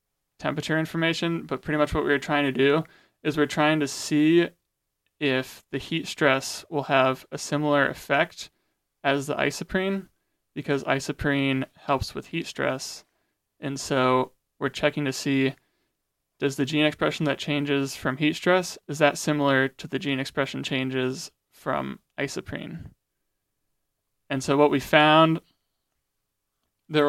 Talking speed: 145 wpm